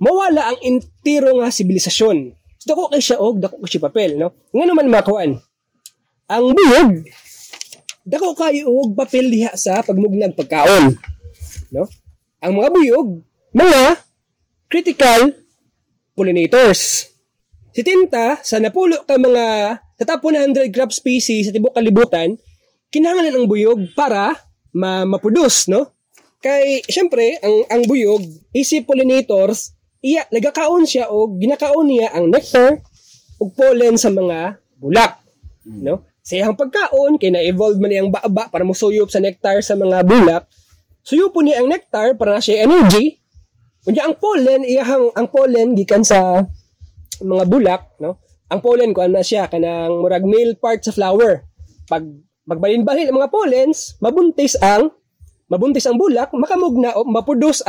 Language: Filipino